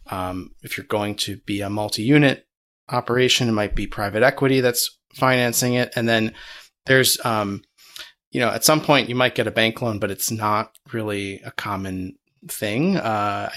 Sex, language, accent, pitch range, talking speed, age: male, English, American, 105-130 Hz, 175 wpm, 30-49